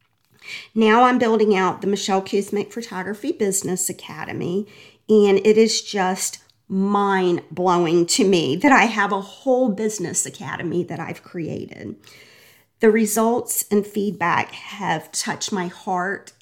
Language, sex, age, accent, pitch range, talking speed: English, female, 40-59, American, 175-210 Hz, 130 wpm